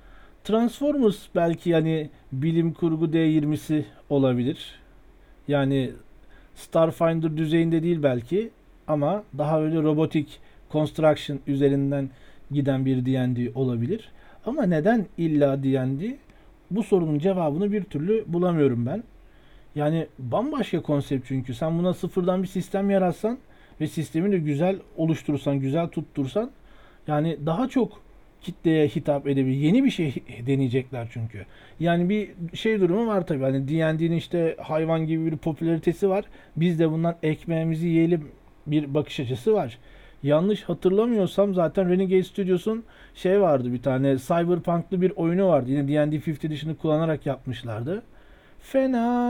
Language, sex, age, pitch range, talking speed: Turkish, male, 40-59, 145-185 Hz, 125 wpm